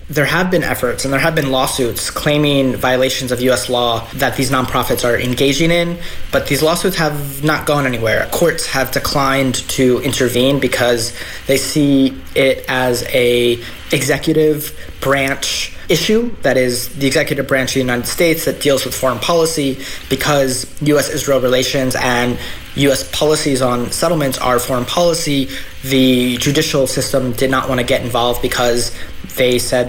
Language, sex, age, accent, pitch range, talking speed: English, male, 20-39, American, 125-145 Hz, 155 wpm